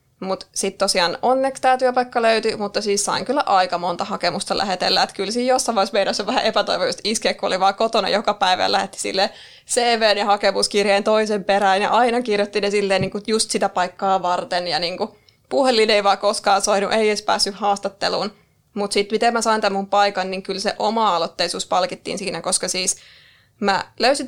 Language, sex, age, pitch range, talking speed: Finnish, female, 20-39, 195-220 Hz, 190 wpm